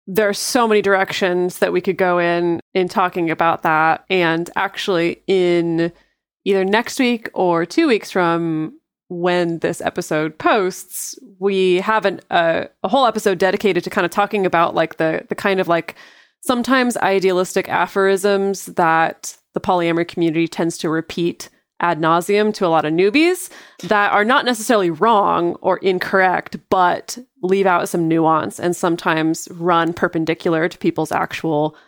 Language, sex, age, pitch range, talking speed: English, female, 20-39, 170-200 Hz, 155 wpm